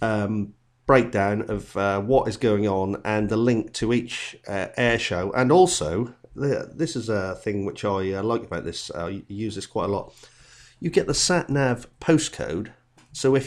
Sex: male